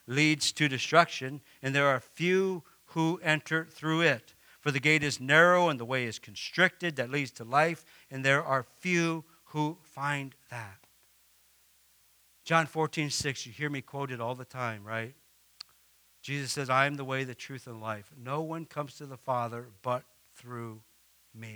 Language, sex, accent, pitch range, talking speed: English, male, American, 125-165 Hz, 175 wpm